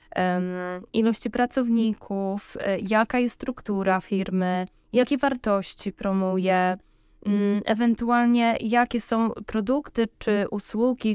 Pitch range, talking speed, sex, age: 205-235 Hz, 80 wpm, female, 10-29